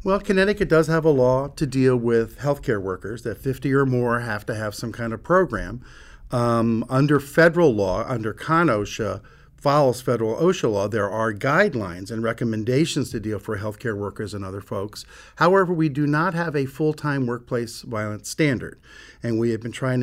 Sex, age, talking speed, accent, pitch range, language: male, 50-69, 185 wpm, American, 110-145 Hz, English